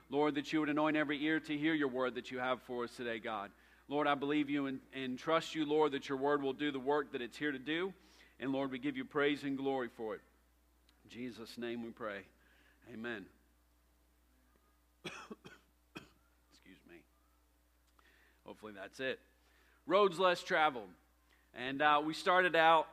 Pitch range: 130-160 Hz